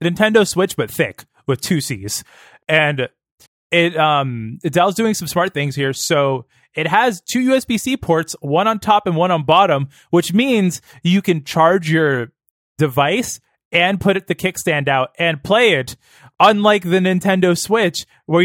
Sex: male